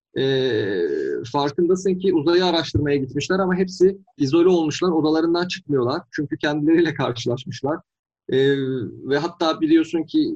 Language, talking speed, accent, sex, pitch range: Turkish, 115 wpm, native, male, 135-175 Hz